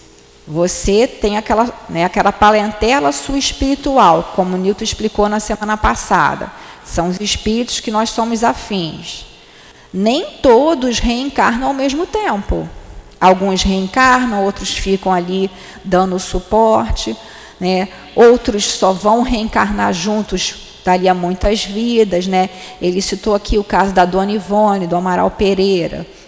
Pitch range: 180-235 Hz